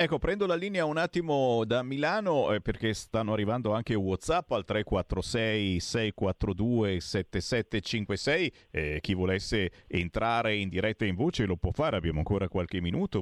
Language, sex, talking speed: Italian, male, 150 wpm